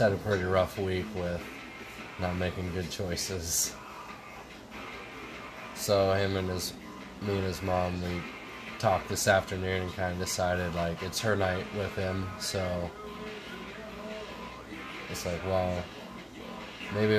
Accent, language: American, English